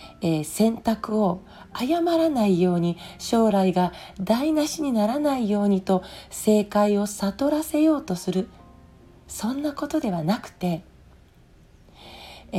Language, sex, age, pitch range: Japanese, female, 40-59, 185-255 Hz